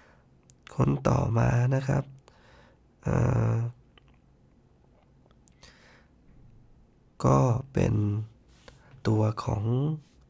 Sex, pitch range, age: male, 110-130 Hz, 20-39